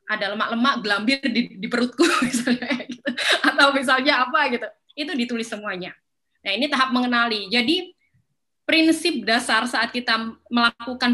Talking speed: 135 wpm